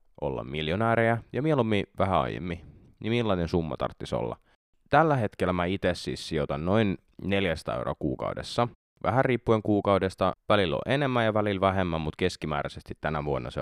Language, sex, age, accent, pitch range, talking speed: Finnish, male, 20-39, native, 85-115 Hz, 155 wpm